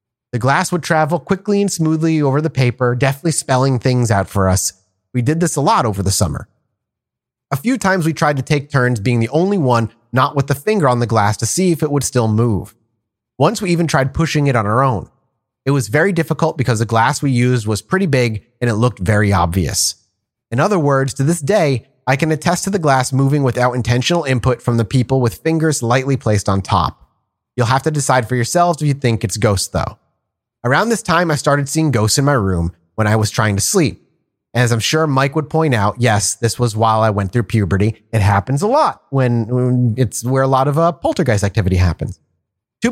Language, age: English, 30-49